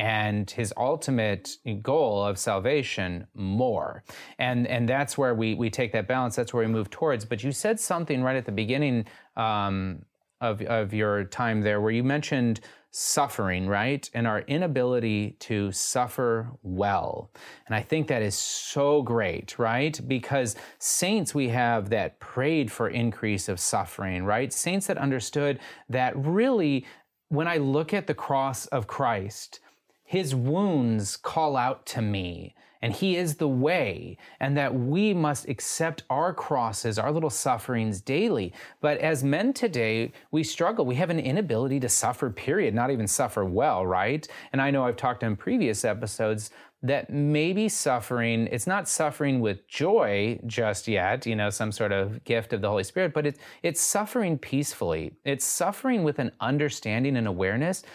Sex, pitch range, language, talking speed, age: male, 110-150 Hz, English, 165 wpm, 30-49